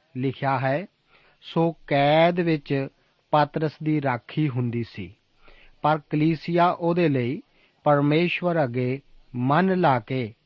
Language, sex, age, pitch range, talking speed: Punjabi, male, 40-59, 130-160 Hz, 110 wpm